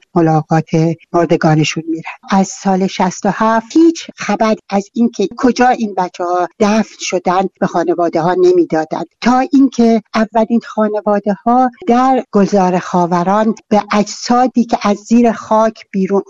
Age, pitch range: 60-79, 185-230 Hz